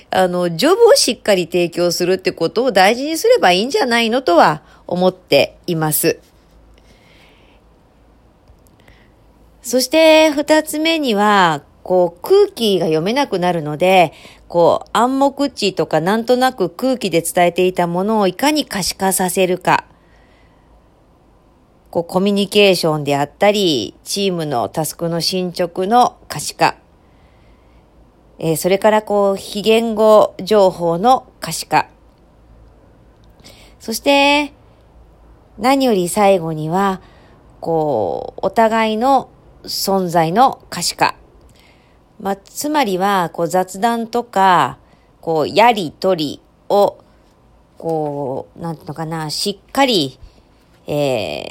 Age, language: 40-59, Japanese